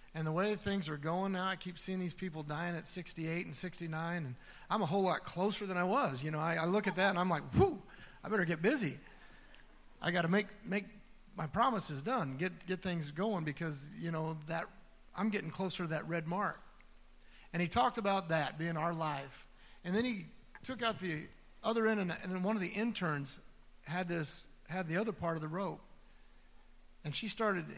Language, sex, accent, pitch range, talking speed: English, male, American, 155-195 Hz, 210 wpm